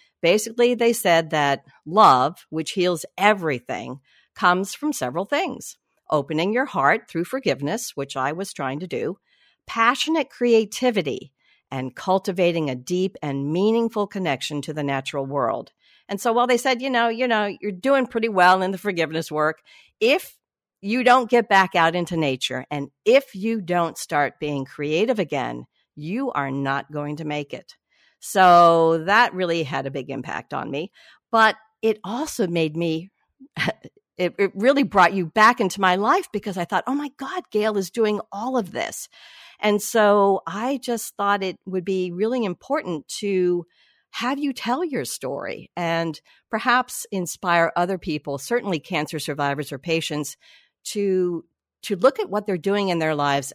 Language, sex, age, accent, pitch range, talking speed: English, female, 50-69, American, 155-230 Hz, 165 wpm